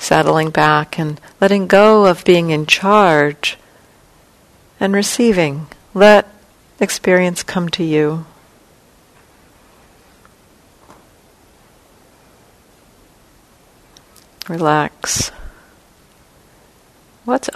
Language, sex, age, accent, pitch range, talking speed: English, female, 60-79, American, 115-175 Hz, 60 wpm